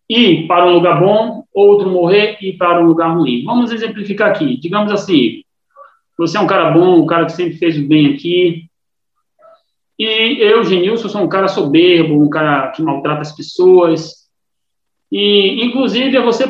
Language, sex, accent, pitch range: Portuguese, male, Brazilian, 165-220 Hz